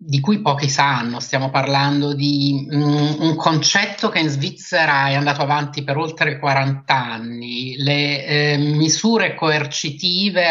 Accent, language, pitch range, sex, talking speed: native, Italian, 135-165 Hz, male, 135 wpm